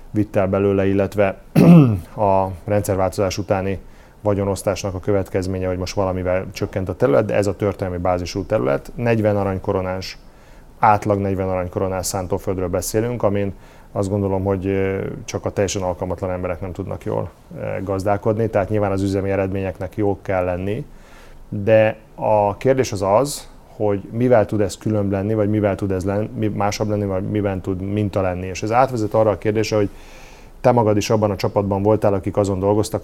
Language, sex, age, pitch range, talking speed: Hungarian, male, 30-49, 95-110 Hz, 160 wpm